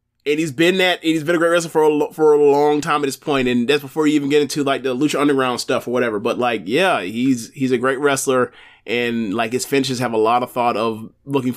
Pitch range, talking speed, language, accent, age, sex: 115-140 Hz, 265 wpm, English, American, 30-49, male